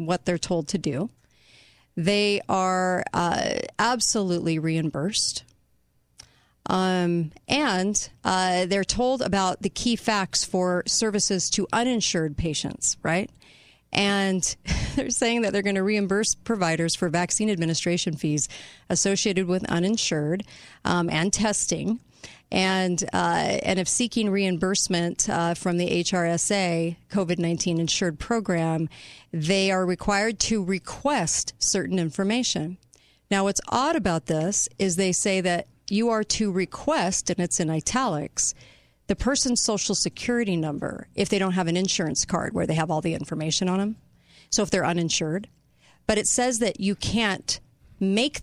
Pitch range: 170-210 Hz